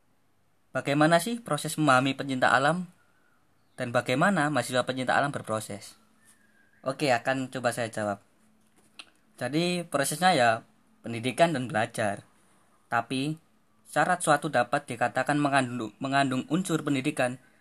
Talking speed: 110 wpm